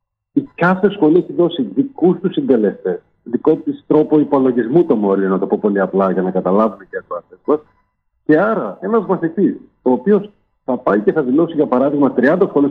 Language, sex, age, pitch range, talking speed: Greek, male, 40-59, 125-195 Hz, 190 wpm